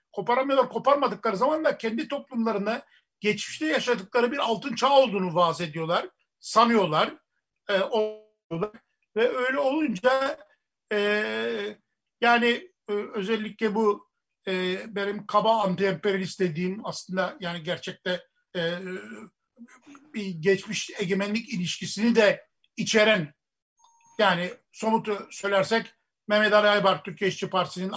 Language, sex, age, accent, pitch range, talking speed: Turkish, male, 50-69, native, 185-225 Hz, 100 wpm